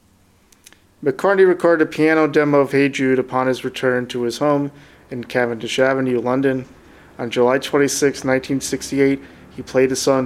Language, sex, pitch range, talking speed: English, male, 125-145 Hz, 150 wpm